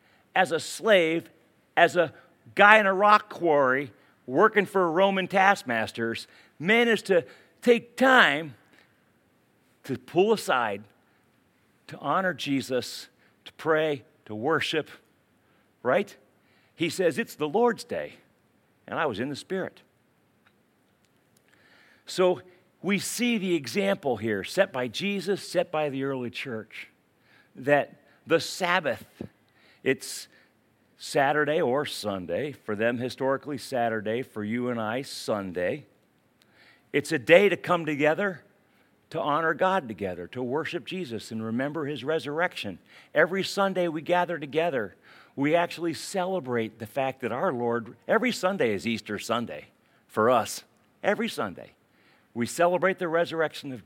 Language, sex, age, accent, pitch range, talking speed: English, male, 50-69, American, 120-180 Hz, 130 wpm